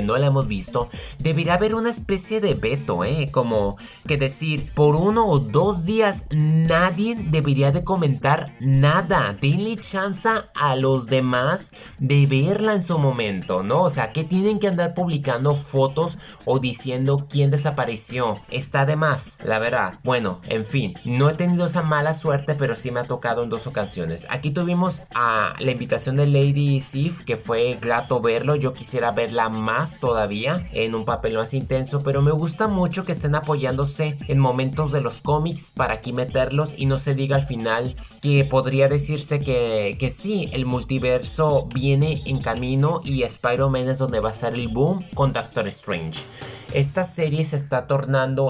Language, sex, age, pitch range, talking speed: Spanish, male, 20-39, 125-155 Hz, 175 wpm